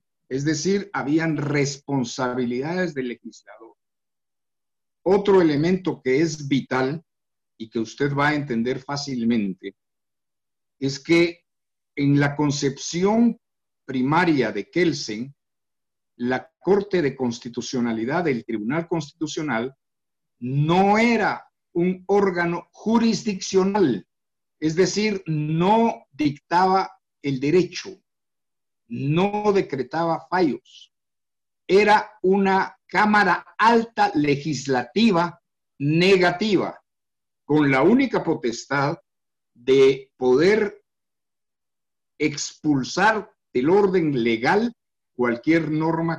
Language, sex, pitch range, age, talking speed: Spanish, male, 130-190 Hz, 50-69, 85 wpm